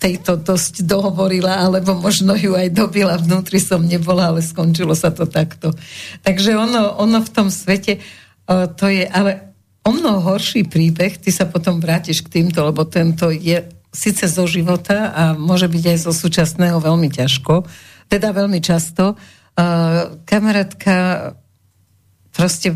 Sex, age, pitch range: female, 50-69, 155-185 Hz